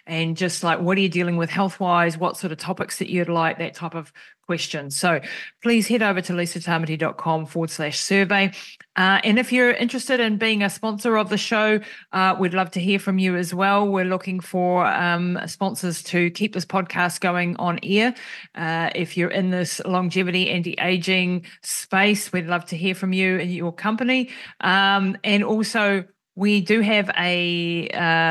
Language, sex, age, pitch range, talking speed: English, female, 30-49, 170-205 Hz, 180 wpm